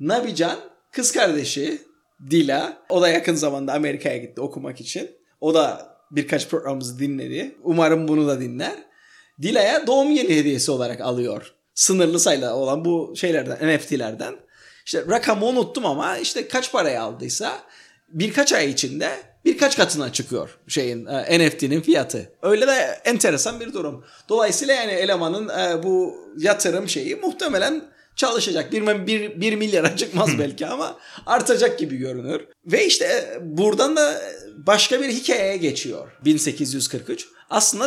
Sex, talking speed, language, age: male, 130 wpm, Turkish, 30-49